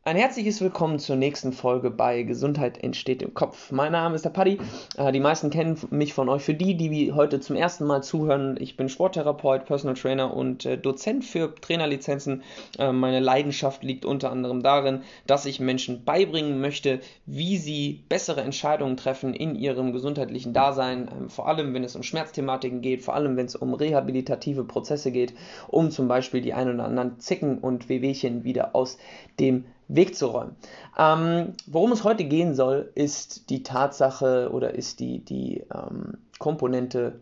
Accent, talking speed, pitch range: German, 170 wpm, 130-155 Hz